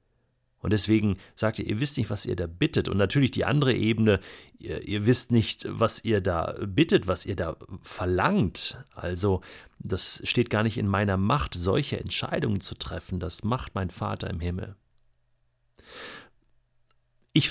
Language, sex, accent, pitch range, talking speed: German, male, German, 95-120 Hz, 160 wpm